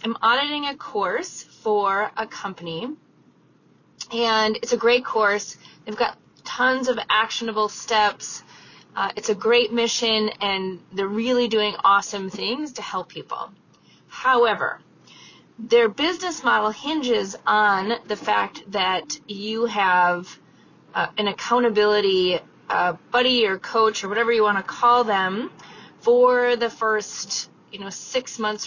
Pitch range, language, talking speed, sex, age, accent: 200-250 Hz, English, 135 wpm, female, 30-49, American